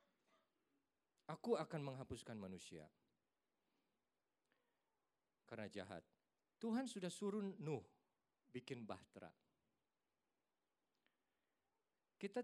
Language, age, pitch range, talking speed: Indonesian, 50-69, 115-150 Hz, 65 wpm